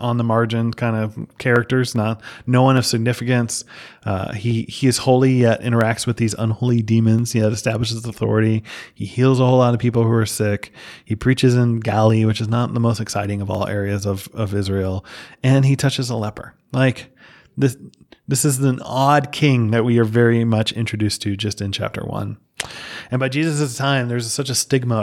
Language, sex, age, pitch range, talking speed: English, male, 30-49, 110-125 Hz, 195 wpm